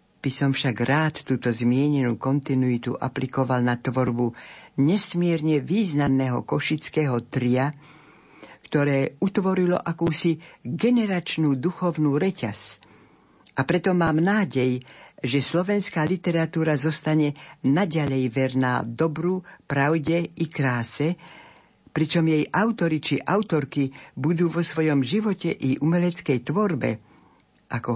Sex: female